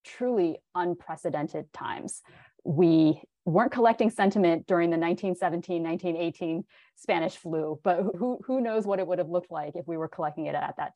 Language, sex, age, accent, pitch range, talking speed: English, female, 30-49, American, 160-195 Hz, 160 wpm